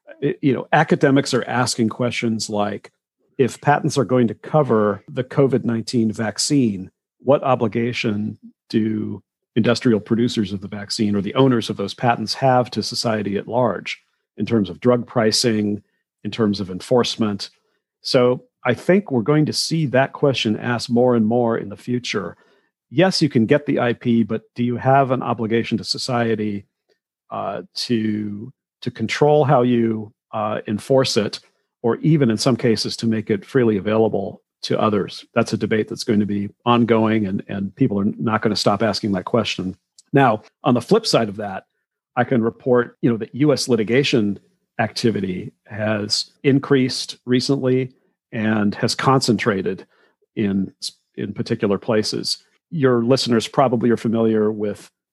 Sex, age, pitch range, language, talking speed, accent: male, 50-69, 110-130 Hz, English, 155 wpm, American